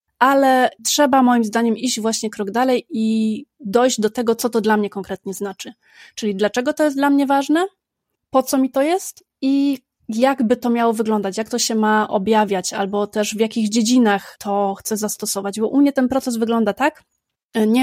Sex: female